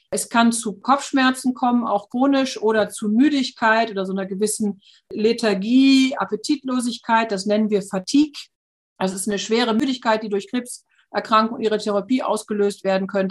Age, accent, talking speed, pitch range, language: 50-69, German, 155 wpm, 200-240 Hz, German